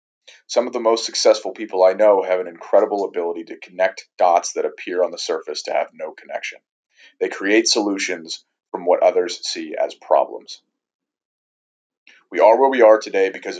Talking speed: 175 wpm